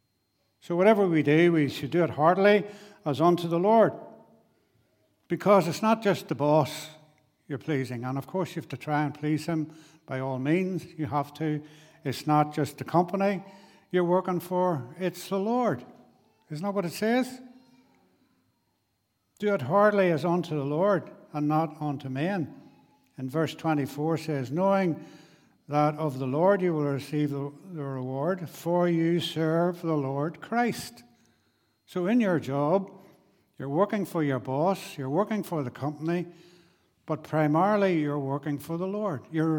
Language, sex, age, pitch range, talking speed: English, male, 70-89, 140-180 Hz, 160 wpm